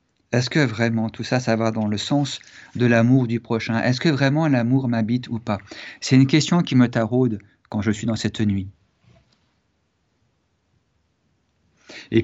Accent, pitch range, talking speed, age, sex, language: French, 115-140 Hz, 165 wpm, 50-69, male, French